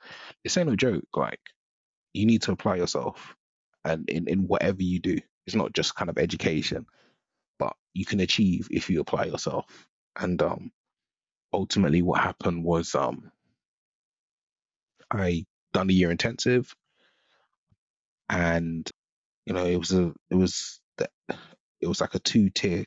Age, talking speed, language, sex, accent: 30-49, 145 wpm, English, male, British